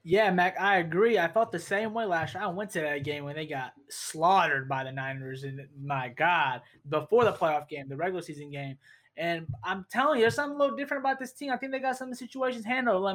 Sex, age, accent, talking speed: male, 20-39, American, 255 wpm